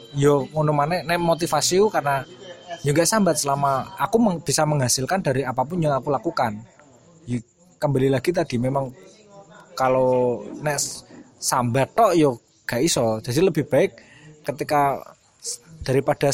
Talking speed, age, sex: 125 wpm, 20-39, male